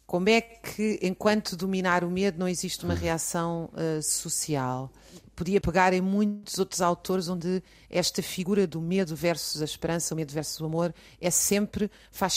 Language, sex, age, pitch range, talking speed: Portuguese, female, 40-59, 160-200 Hz, 155 wpm